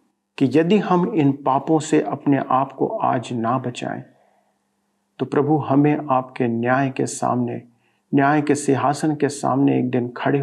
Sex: male